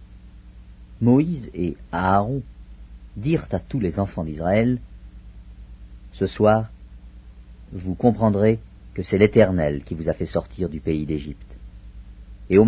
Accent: French